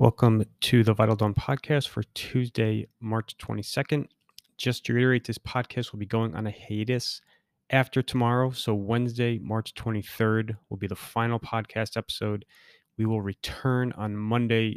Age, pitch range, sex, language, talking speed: 20-39, 100-115 Hz, male, English, 155 wpm